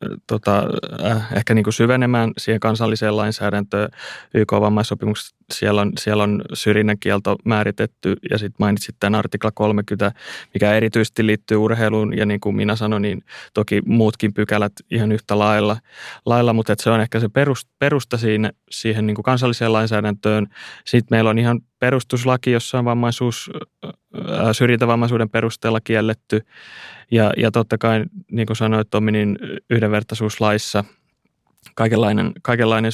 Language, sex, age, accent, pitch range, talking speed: Finnish, male, 20-39, native, 105-115 Hz, 135 wpm